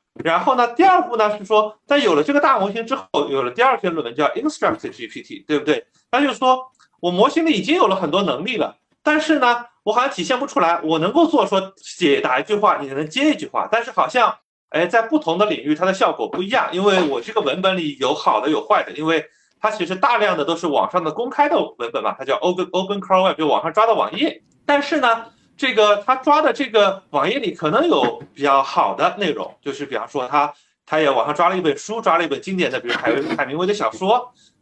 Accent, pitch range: native, 160-270 Hz